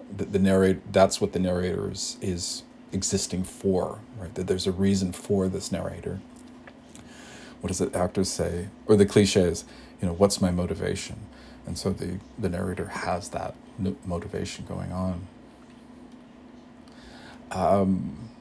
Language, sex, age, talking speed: English, male, 40-59, 145 wpm